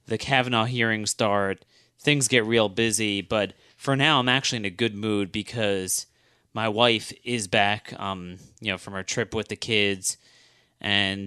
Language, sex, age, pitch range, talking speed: English, male, 30-49, 100-125 Hz, 170 wpm